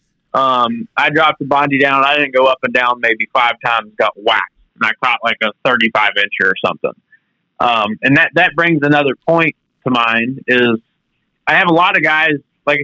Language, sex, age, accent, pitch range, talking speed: English, male, 30-49, American, 125-160 Hz, 200 wpm